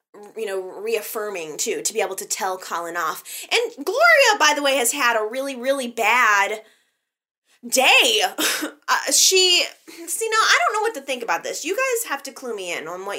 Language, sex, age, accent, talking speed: English, female, 20-39, American, 200 wpm